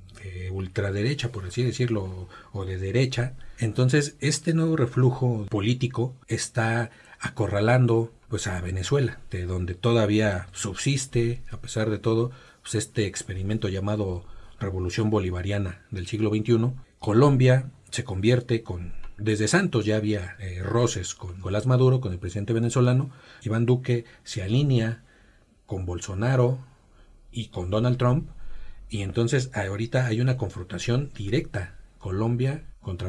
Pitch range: 100-125 Hz